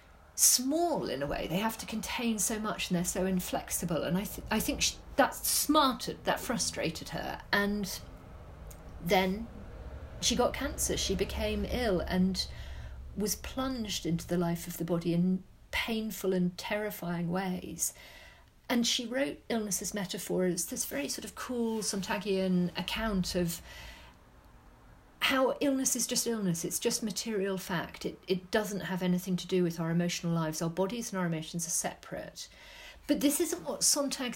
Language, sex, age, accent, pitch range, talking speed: English, female, 40-59, British, 175-225 Hz, 160 wpm